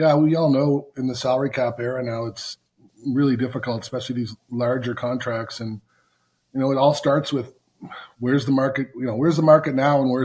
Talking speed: 205 wpm